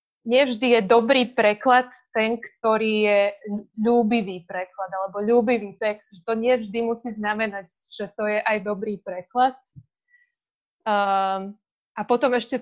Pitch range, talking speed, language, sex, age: 205-235 Hz, 120 wpm, Slovak, female, 20-39